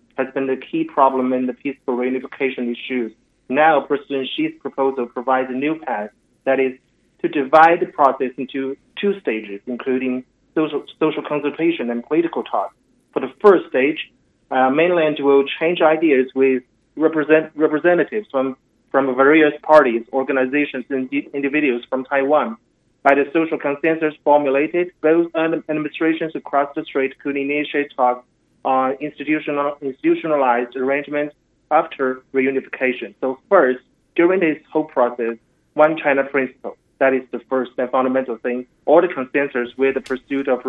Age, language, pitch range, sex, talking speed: 30-49, English, 130-155 Hz, male, 140 wpm